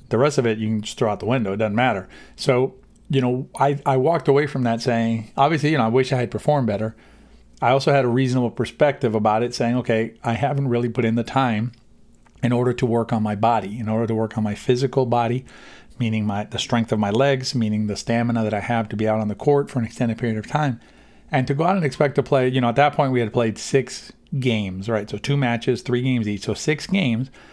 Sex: male